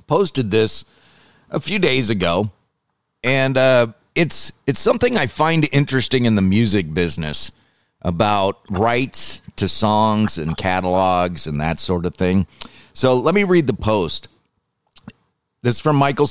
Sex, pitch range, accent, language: male, 100-130 Hz, American, English